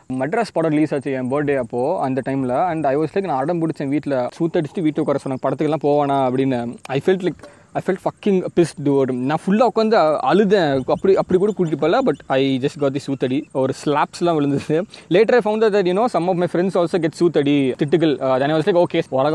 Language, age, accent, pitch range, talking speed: Tamil, 20-39, native, 140-175 Hz, 165 wpm